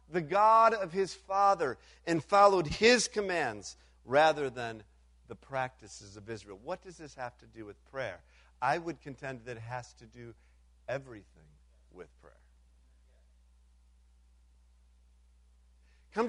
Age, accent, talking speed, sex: 50-69, American, 130 wpm, male